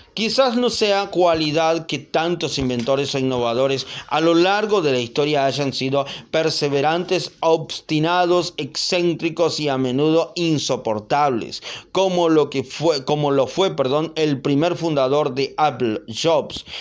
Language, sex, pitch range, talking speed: Spanish, male, 135-175 Hz, 135 wpm